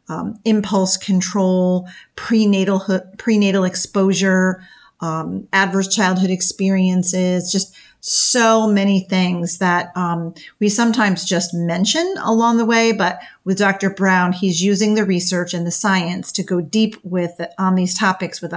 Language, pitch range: English, 180-210 Hz